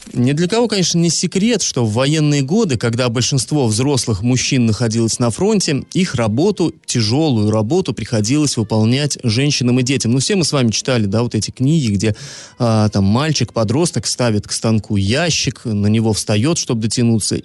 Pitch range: 110-150 Hz